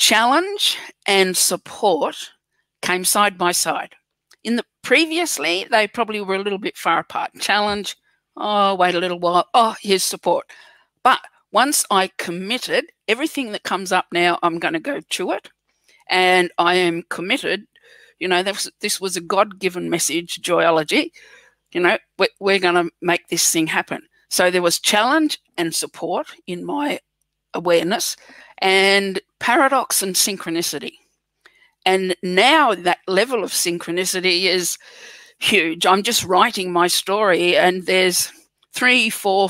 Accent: Australian